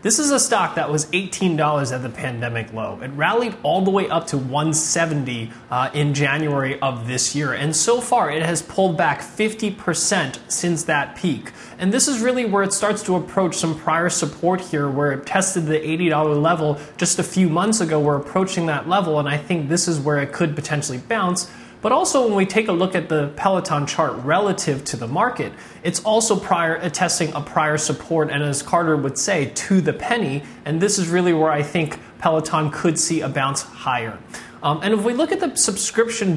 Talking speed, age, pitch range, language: 205 wpm, 20-39, 150-190 Hz, English